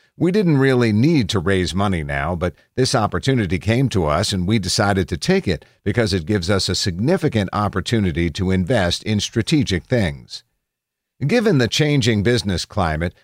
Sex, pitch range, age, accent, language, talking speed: male, 90-120 Hz, 50-69, American, English, 170 wpm